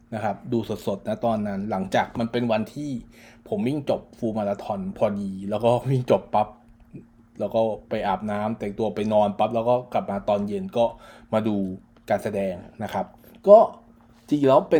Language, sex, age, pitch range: Thai, male, 20-39, 110-130 Hz